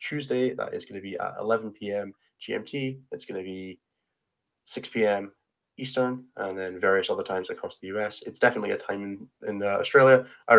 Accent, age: British, 20-39